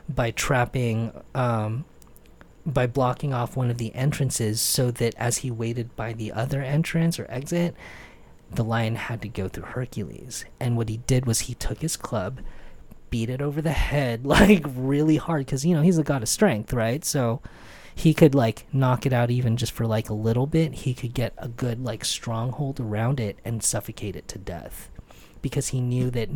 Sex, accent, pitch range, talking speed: male, American, 115-135 Hz, 195 wpm